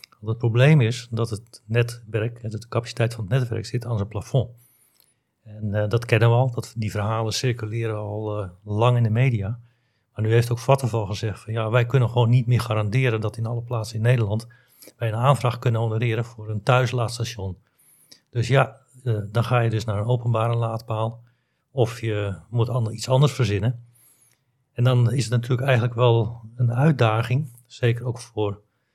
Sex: male